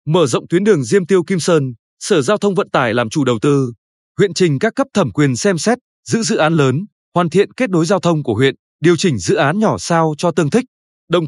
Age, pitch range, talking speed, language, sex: 20-39, 155-200 Hz, 250 wpm, Vietnamese, male